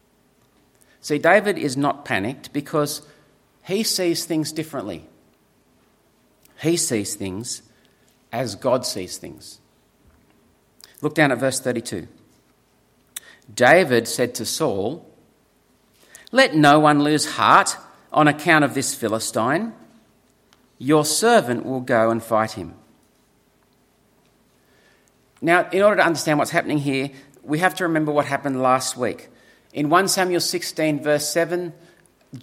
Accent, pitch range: Australian, 130-170 Hz